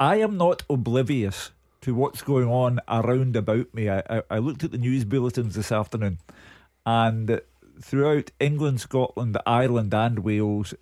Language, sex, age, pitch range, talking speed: English, male, 50-69, 105-145 Hz, 150 wpm